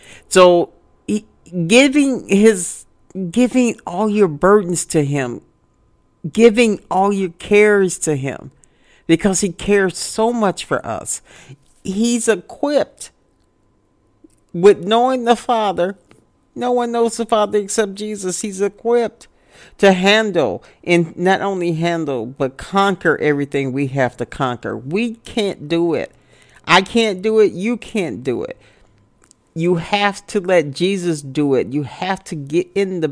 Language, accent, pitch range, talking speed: English, American, 150-205 Hz, 140 wpm